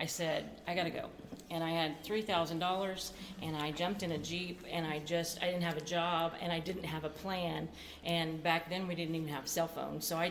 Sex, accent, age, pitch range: female, American, 40-59, 160-180 Hz